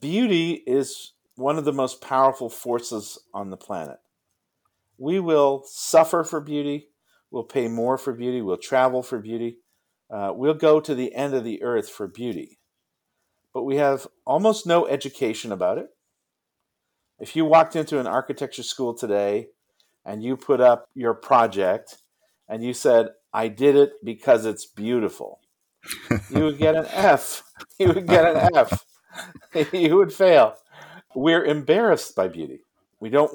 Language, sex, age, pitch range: English, male, 50-69, 120-155 Hz